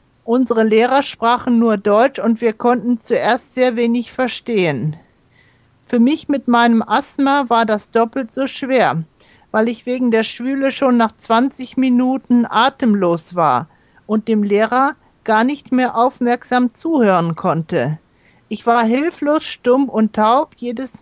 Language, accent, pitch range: Japanese, German, 195-260 Hz